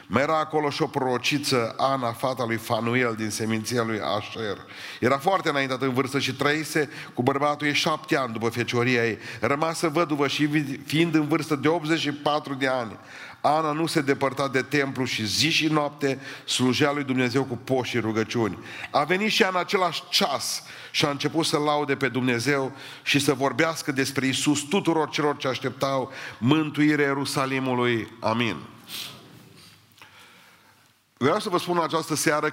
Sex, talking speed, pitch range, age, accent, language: male, 160 wpm, 125-150 Hz, 40-59, native, Romanian